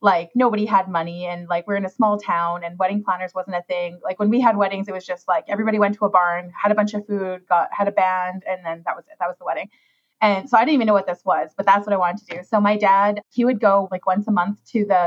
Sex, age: female, 20-39